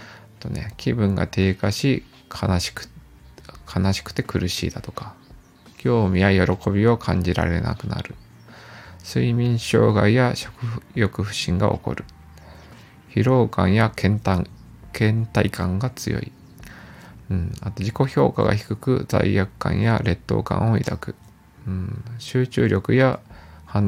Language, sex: Japanese, male